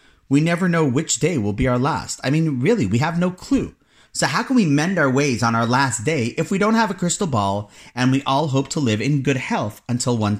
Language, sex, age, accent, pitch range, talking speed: English, male, 30-49, American, 110-160 Hz, 260 wpm